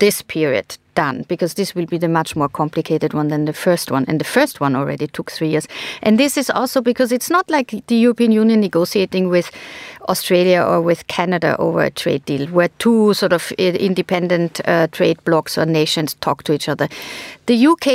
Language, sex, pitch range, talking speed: English, female, 175-230 Hz, 205 wpm